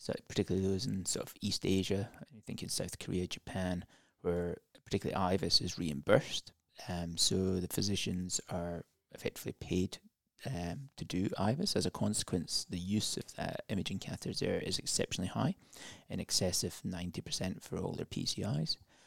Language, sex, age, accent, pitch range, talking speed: English, male, 30-49, British, 90-100 Hz, 165 wpm